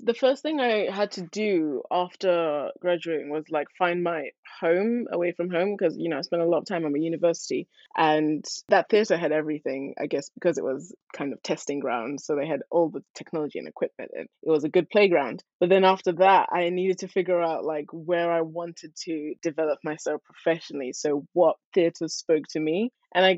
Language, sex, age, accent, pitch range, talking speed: English, female, 20-39, British, 160-185 Hz, 210 wpm